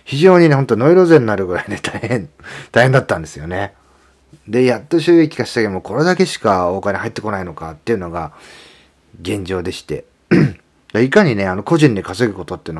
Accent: native